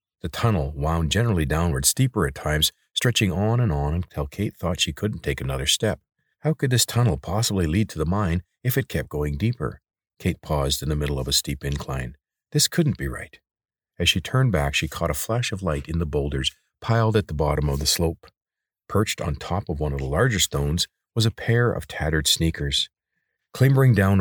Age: 50-69